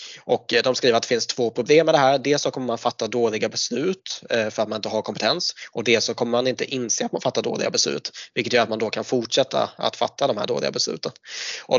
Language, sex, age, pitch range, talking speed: Swedish, male, 20-39, 110-125 Hz, 255 wpm